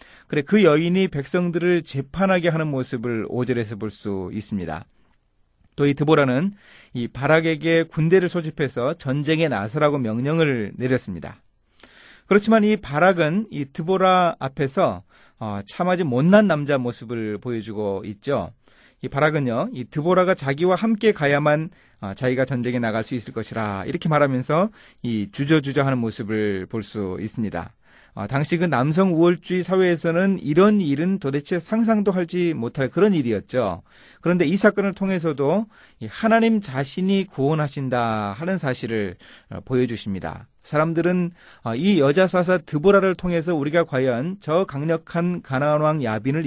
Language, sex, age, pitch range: Korean, male, 30-49, 120-175 Hz